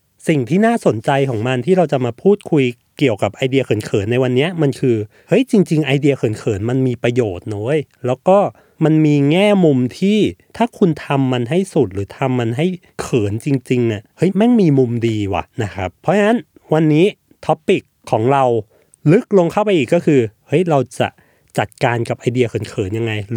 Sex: male